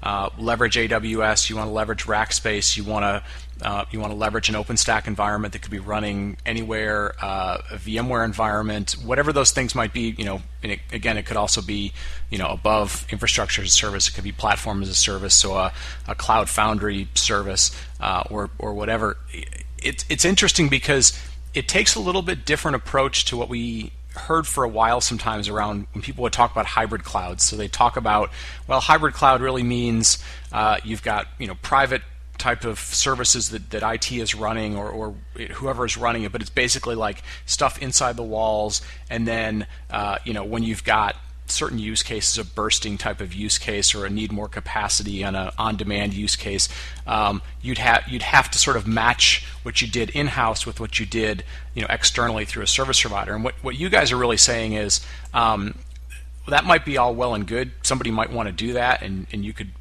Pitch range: 100-115 Hz